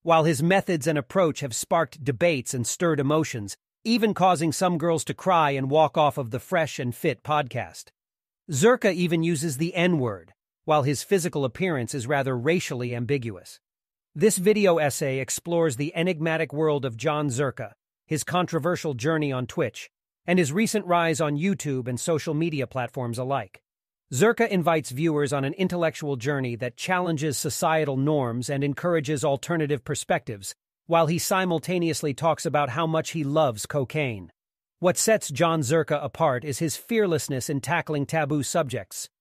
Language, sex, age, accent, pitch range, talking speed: English, male, 40-59, American, 140-170 Hz, 155 wpm